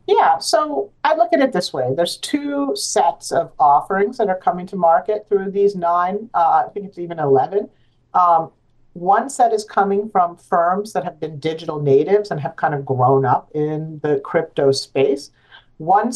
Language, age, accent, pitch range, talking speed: English, 50-69, American, 145-195 Hz, 185 wpm